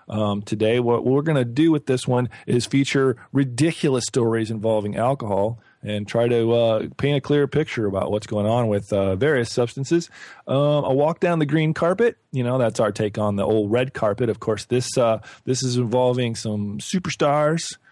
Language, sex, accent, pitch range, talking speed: English, male, American, 110-135 Hz, 195 wpm